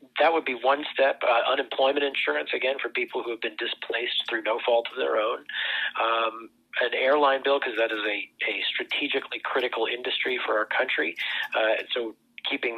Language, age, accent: English, 40-59, American